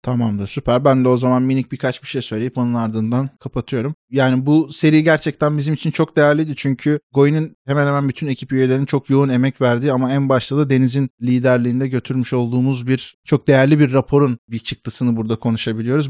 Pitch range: 130-145 Hz